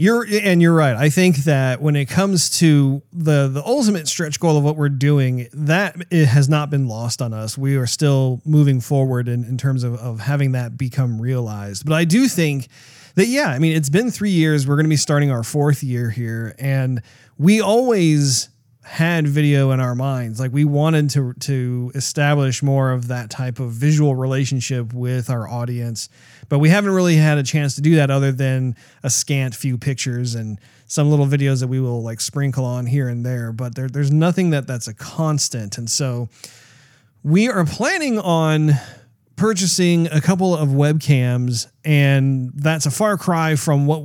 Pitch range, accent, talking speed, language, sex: 125-155 Hz, American, 190 wpm, English, male